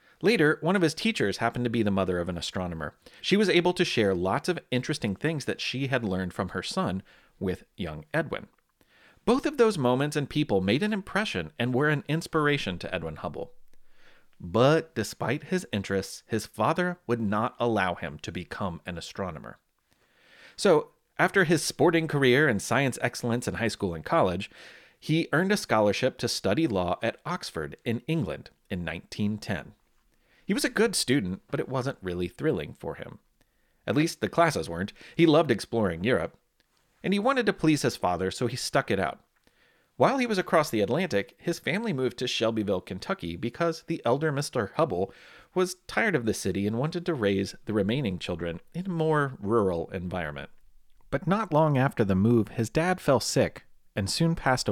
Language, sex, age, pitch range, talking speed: English, male, 30-49, 100-165 Hz, 185 wpm